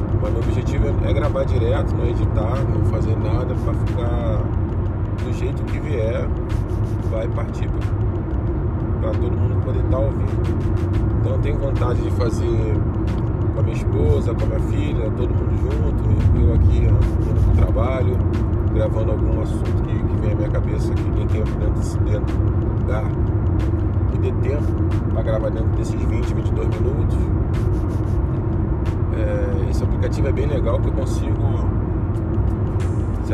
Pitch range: 100-110 Hz